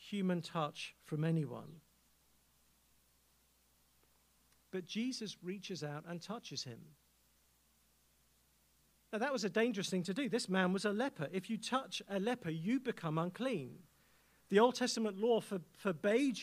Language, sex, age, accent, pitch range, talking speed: English, male, 50-69, British, 140-225 Hz, 135 wpm